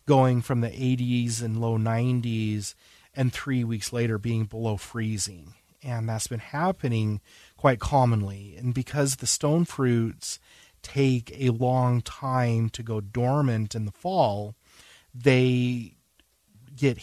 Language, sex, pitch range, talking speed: English, male, 110-130 Hz, 130 wpm